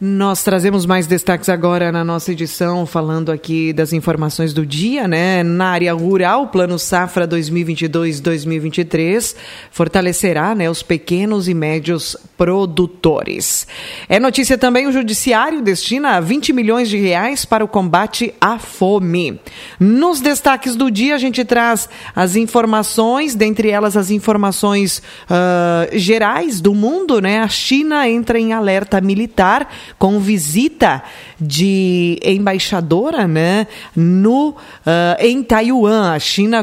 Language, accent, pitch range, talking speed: Portuguese, Brazilian, 175-225 Hz, 130 wpm